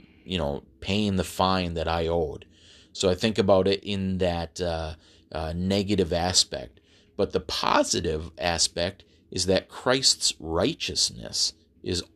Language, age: English, 30-49